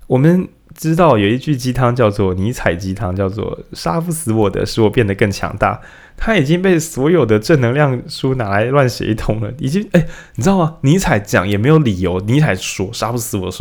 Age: 20-39